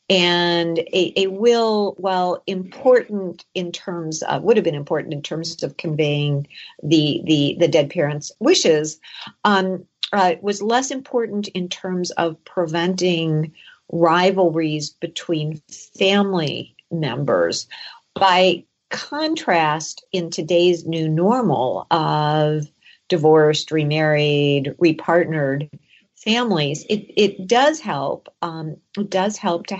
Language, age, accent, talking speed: English, 50-69, American, 110 wpm